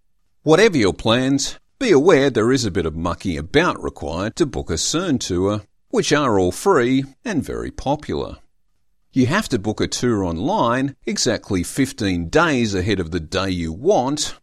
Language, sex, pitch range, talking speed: English, male, 90-125 Hz, 170 wpm